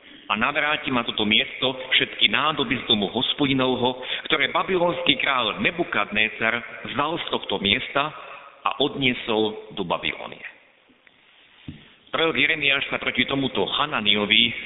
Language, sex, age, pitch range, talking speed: Slovak, male, 50-69, 110-155 Hz, 115 wpm